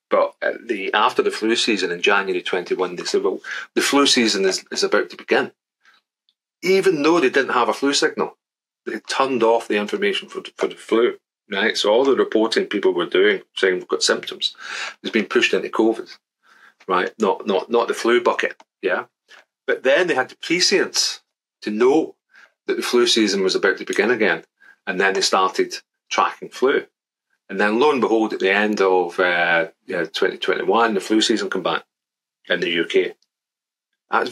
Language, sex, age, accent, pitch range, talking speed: English, male, 30-49, British, 365-405 Hz, 185 wpm